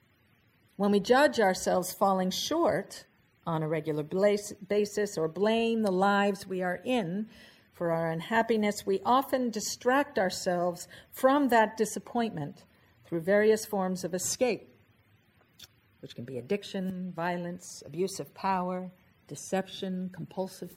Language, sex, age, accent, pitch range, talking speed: English, female, 50-69, American, 160-225 Hz, 120 wpm